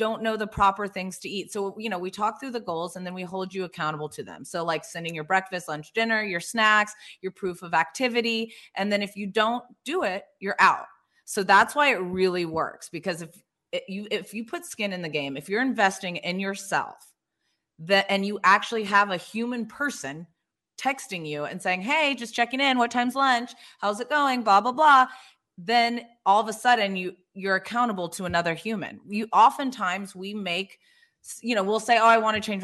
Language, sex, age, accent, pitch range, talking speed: English, female, 30-49, American, 185-230 Hz, 215 wpm